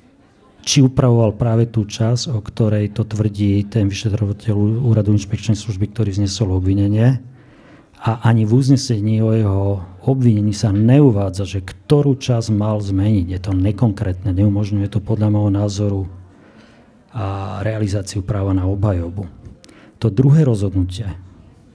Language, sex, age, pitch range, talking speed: Slovak, male, 40-59, 100-120 Hz, 130 wpm